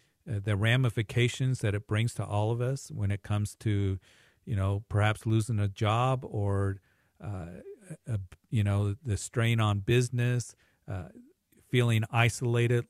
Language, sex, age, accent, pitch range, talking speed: English, male, 50-69, American, 100-120 Hz, 140 wpm